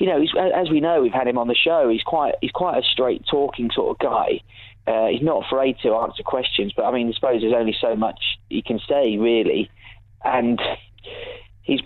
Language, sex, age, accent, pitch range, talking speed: English, male, 30-49, British, 110-140 Hz, 210 wpm